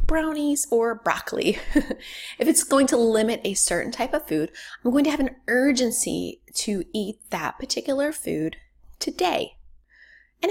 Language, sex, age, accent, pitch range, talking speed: English, female, 20-39, American, 200-260 Hz, 150 wpm